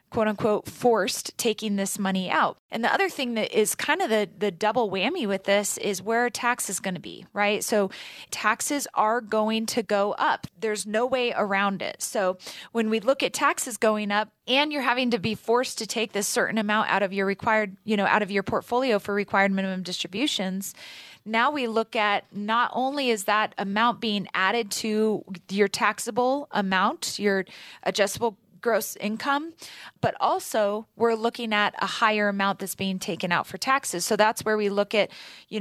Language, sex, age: English, female, 20-39